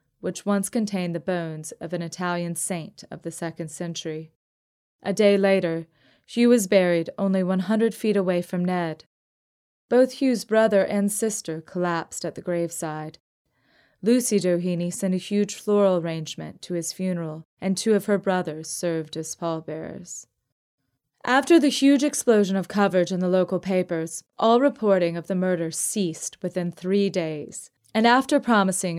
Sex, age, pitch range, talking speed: female, 20-39, 165-200 Hz, 155 wpm